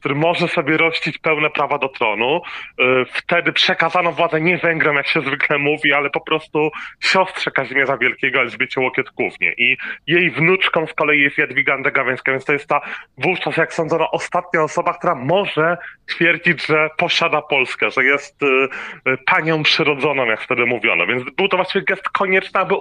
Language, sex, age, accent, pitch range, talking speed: Polish, male, 20-39, native, 135-170 Hz, 165 wpm